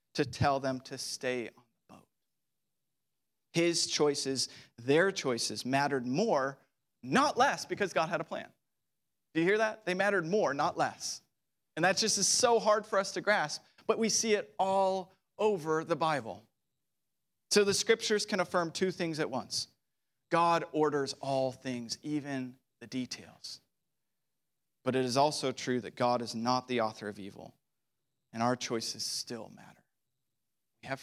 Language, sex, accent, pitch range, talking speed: English, male, American, 125-170 Hz, 160 wpm